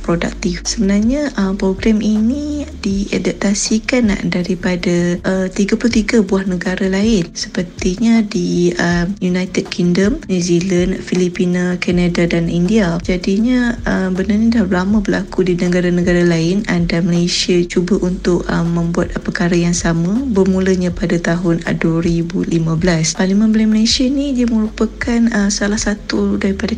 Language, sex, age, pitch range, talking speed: Malay, female, 20-39, 175-205 Hz, 110 wpm